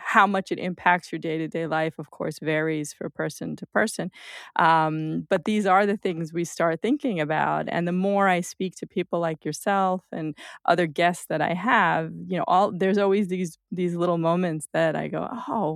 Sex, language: female, English